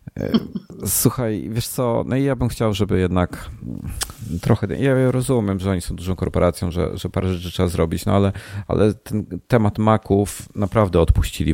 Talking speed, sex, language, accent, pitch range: 165 wpm, male, Polish, native, 85-110 Hz